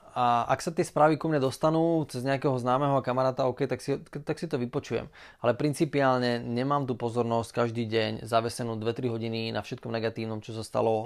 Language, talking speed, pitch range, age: Slovak, 185 wpm, 115-135 Hz, 20-39